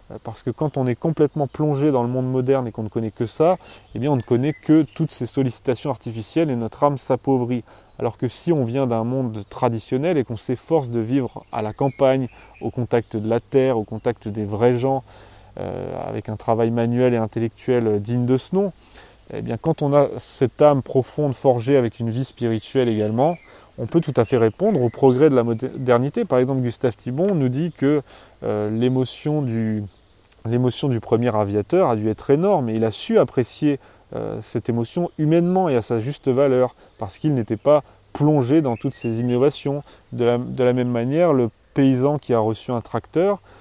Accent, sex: French, male